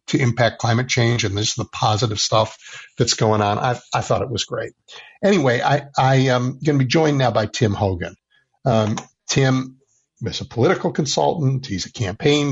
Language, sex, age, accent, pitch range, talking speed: English, male, 50-69, American, 110-135 Hz, 185 wpm